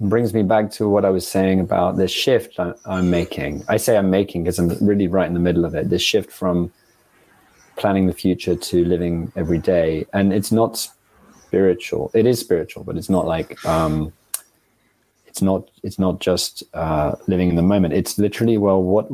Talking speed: 195 wpm